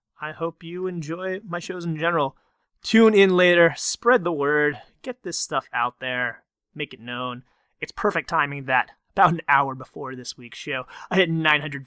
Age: 30-49